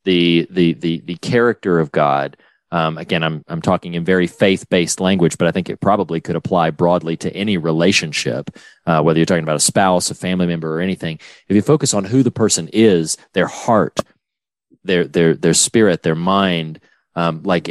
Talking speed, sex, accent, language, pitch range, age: 195 wpm, male, American, English, 90-115 Hz, 30-49